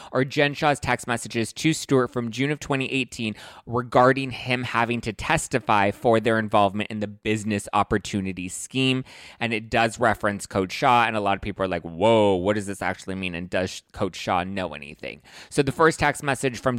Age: 20-39